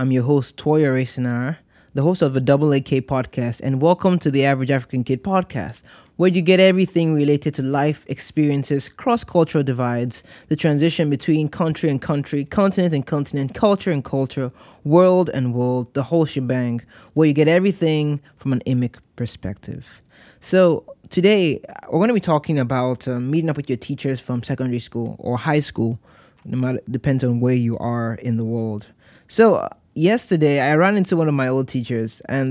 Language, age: English, 20-39